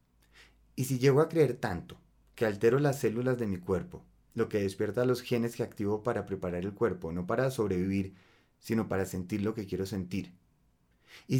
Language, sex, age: Spanish, male, 30-49